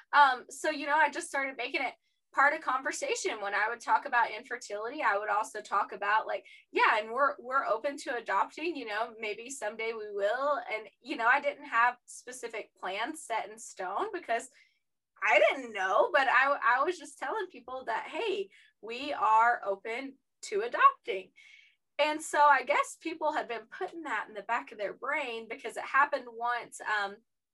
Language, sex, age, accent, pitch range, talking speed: English, female, 20-39, American, 215-300 Hz, 185 wpm